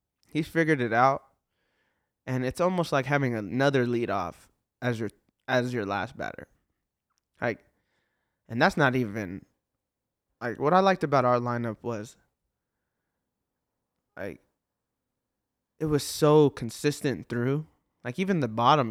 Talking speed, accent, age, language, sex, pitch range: 125 wpm, American, 20-39, English, male, 110-140 Hz